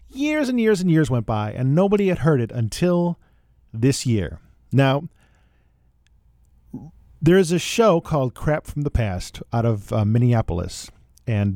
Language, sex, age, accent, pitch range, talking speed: English, male, 40-59, American, 110-150 Hz, 155 wpm